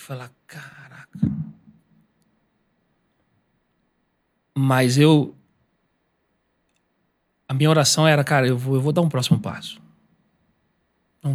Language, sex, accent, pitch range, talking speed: Portuguese, male, Brazilian, 130-155 Hz, 90 wpm